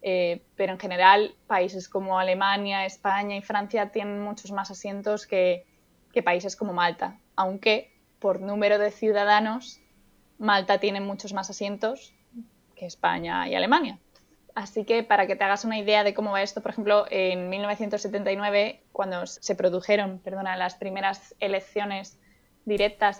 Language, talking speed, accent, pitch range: Spanish, 145 wpm, Spanish, 195-230 Hz